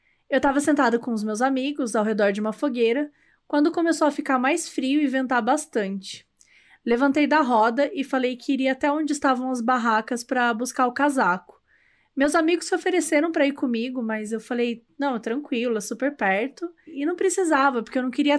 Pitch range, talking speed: 230-285 Hz, 195 wpm